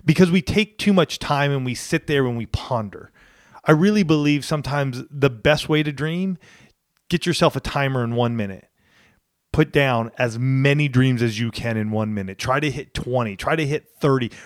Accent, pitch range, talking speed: American, 130-170 Hz, 200 wpm